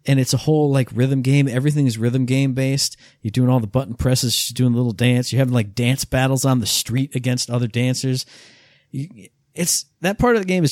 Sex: male